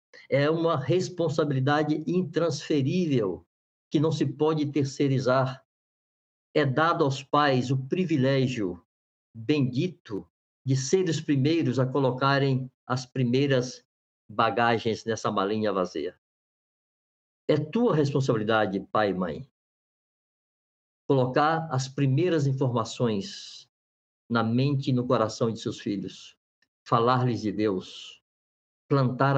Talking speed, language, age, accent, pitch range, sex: 100 wpm, Portuguese, 60-79, Brazilian, 115-150 Hz, male